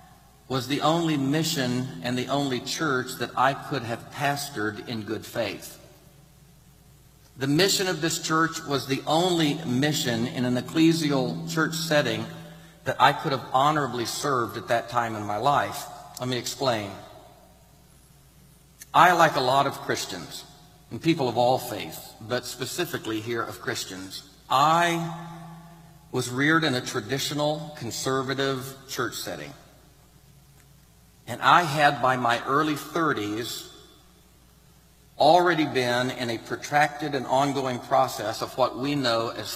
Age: 50-69